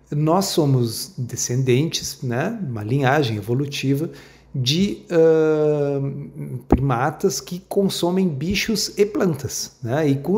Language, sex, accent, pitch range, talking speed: Portuguese, male, Brazilian, 125-155 Hz, 105 wpm